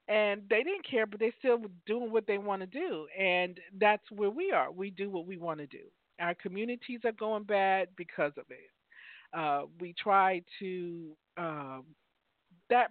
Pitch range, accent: 170-225 Hz, American